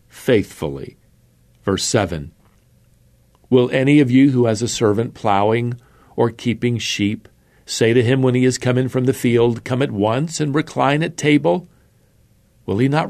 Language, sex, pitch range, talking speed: English, male, 105-130 Hz, 160 wpm